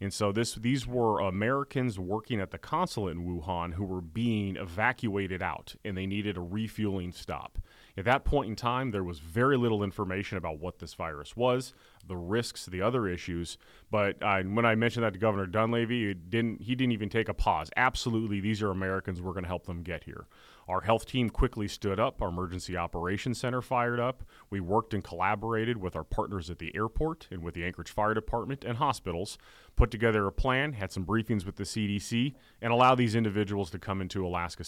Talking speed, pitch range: 200 wpm, 90-120 Hz